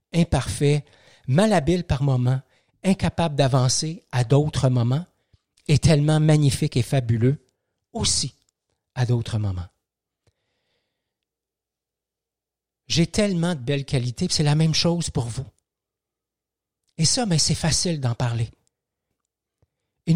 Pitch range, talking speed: 120-160 Hz, 105 wpm